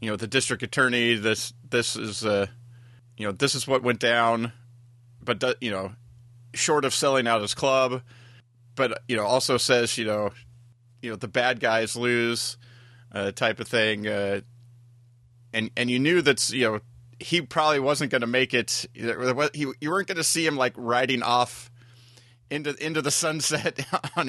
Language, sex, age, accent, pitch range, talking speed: English, male, 30-49, American, 120-135 Hz, 180 wpm